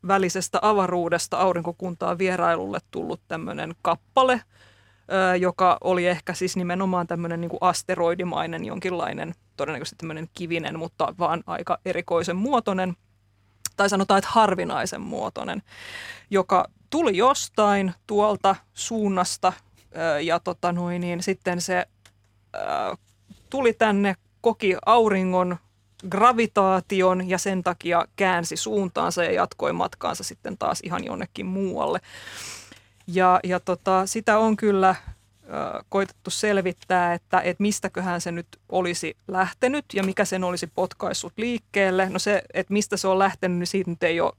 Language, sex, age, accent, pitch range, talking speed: Finnish, female, 20-39, native, 175-195 Hz, 125 wpm